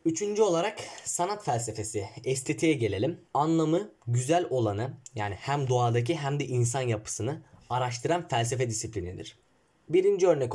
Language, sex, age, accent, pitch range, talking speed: Turkish, male, 10-29, native, 115-155 Hz, 120 wpm